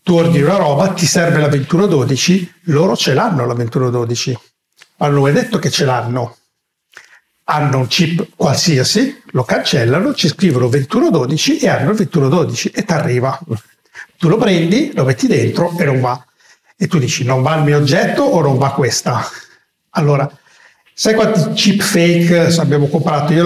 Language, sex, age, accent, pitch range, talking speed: Italian, male, 60-79, native, 140-180 Hz, 165 wpm